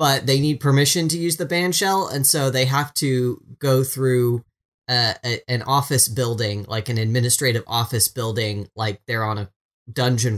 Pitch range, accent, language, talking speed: 115-145 Hz, American, English, 180 wpm